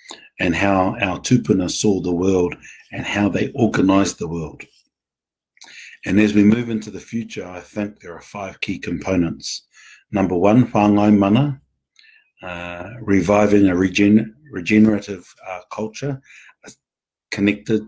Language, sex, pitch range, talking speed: English, male, 95-110 Hz, 130 wpm